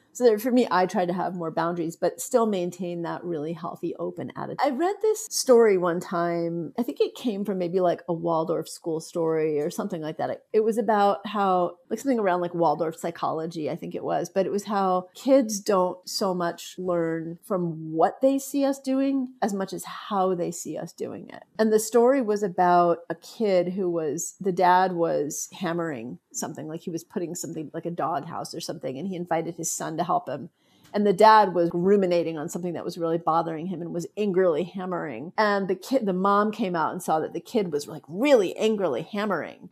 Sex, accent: female, American